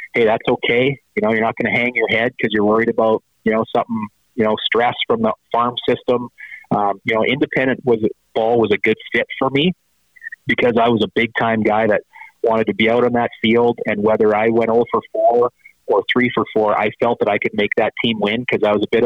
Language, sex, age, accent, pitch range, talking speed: English, male, 30-49, American, 105-120 Hz, 245 wpm